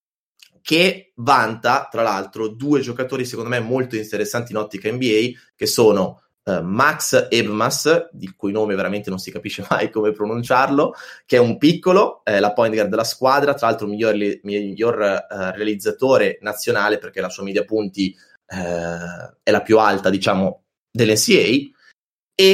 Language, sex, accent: Italian, male, native